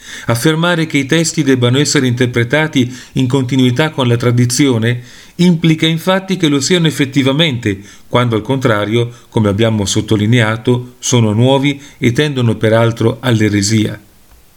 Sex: male